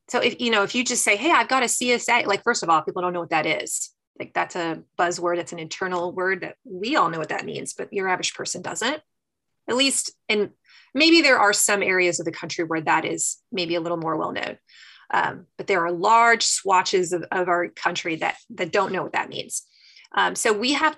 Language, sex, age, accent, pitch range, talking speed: English, female, 30-49, American, 185-235 Hz, 235 wpm